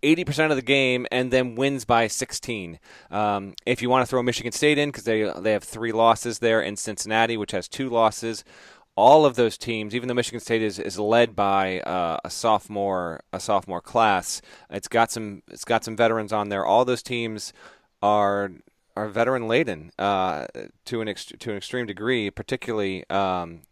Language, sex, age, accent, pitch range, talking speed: English, male, 30-49, American, 110-140 Hz, 190 wpm